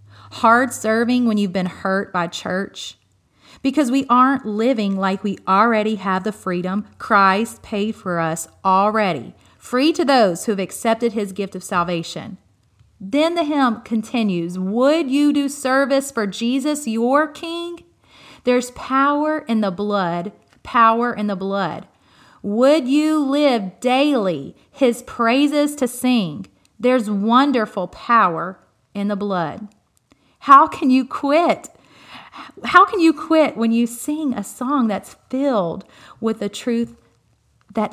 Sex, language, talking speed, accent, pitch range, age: female, English, 140 wpm, American, 195-265 Hz, 40-59